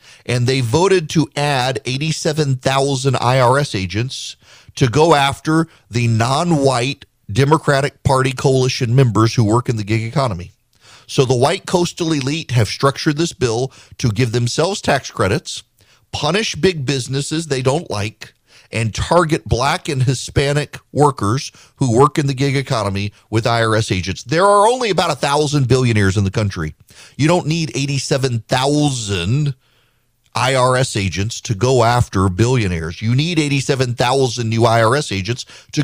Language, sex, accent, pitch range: English, male, American, 120-160 Hz